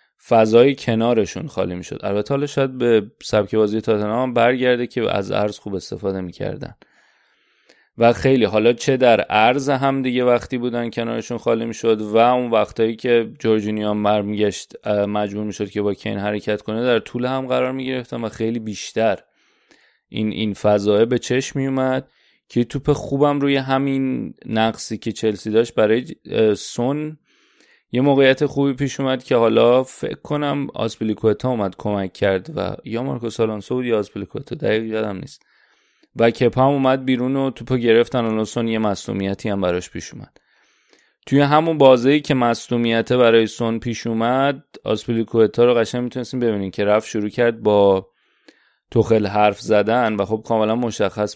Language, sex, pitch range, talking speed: Persian, male, 105-130 Hz, 160 wpm